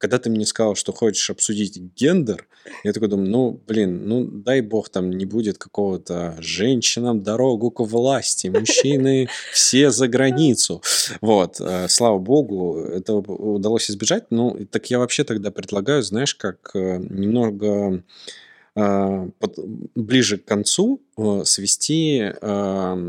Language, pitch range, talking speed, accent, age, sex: Russian, 100-120 Hz, 120 wpm, native, 20-39, male